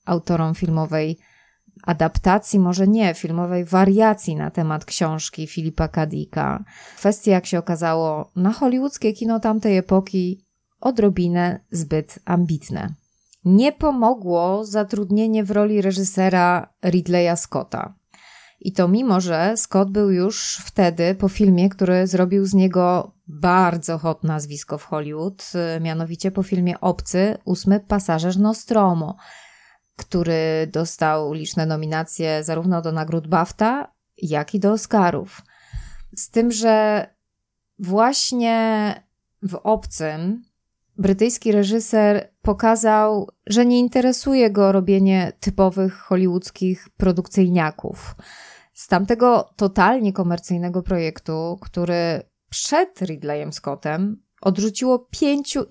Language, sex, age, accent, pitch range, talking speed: Polish, female, 20-39, native, 170-210 Hz, 105 wpm